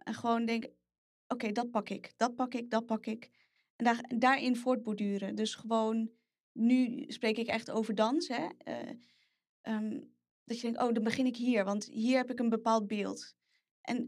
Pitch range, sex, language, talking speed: 210-245 Hz, female, Dutch, 190 wpm